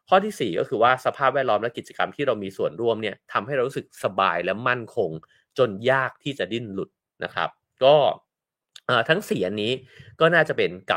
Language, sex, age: English, male, 30-49